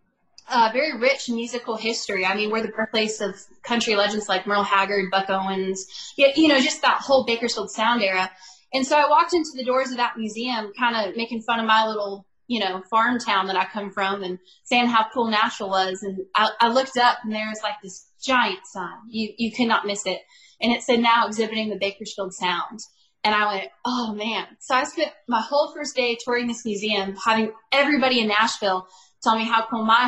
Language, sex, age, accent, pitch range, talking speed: English, female, 10-29, American, 205-240 Hz, 210 wpm